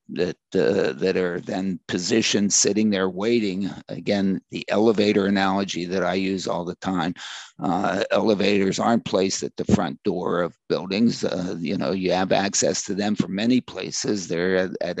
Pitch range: 95-120 Hz